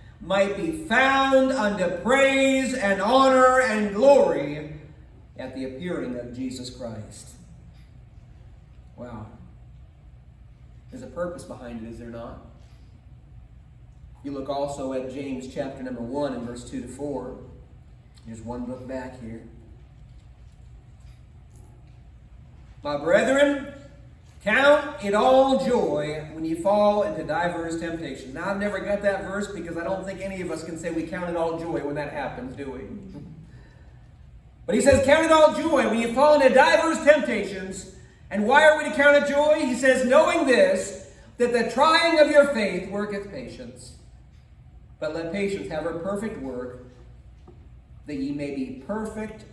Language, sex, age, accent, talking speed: English, male, 40-59, American, 150 wpm